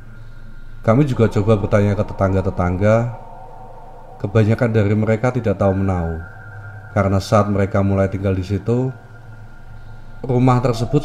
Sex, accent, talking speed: male, native, 115 wpm